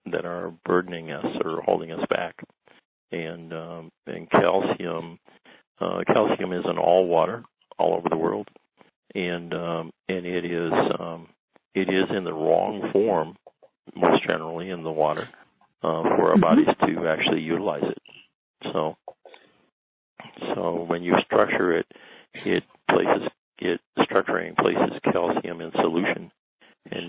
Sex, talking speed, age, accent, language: male, 135 wpm, 50-69, American, English